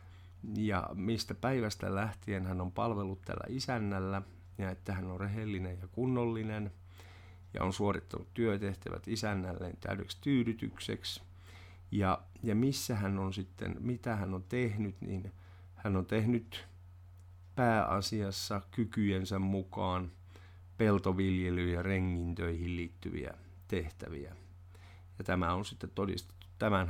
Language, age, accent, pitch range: Finnish, 50-69, native, 90-105 Hz